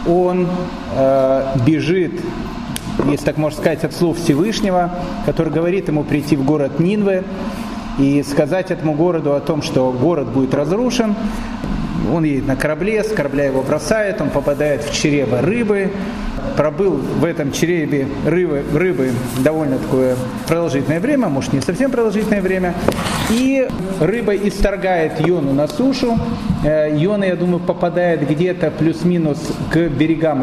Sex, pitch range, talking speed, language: male, 150-190 Hz, 135 wpm, Russian